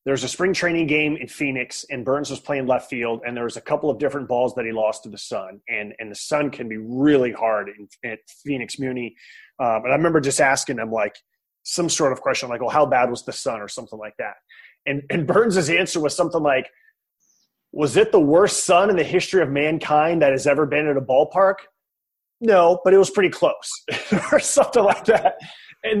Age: 30-49